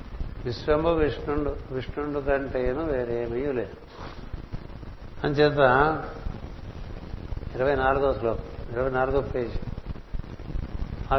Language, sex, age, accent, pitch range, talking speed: Telugu, male, 60-79, native, 95-150 Hz, 80 wpm